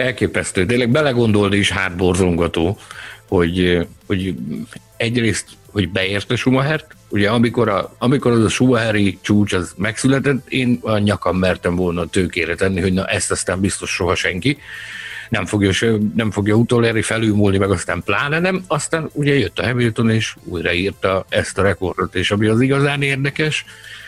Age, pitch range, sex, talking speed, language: 60-79, 100-125 Hz, male, 150 wpm, Hungarian